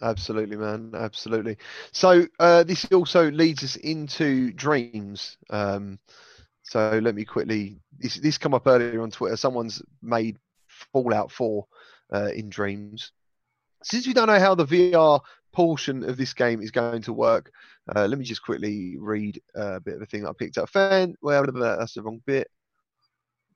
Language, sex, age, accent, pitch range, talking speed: English, male, 20-39, British, 110-160 Hz, 175 wpm